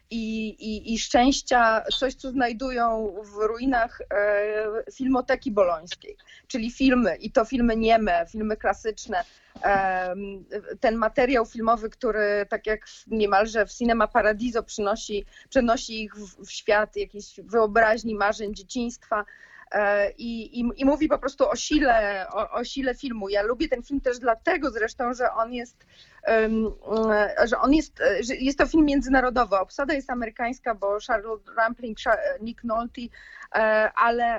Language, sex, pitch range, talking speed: Polish, female, 215-255 Hz, 145 wpm